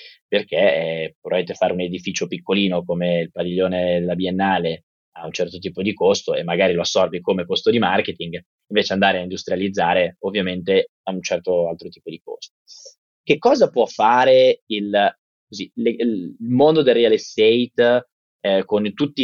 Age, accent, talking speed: 20-39, native, 165 wpm